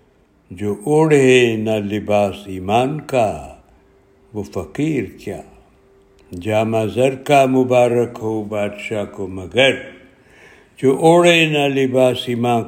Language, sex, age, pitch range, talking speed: Urdu, male, 60-79, 105-135 Hz, 105 wpm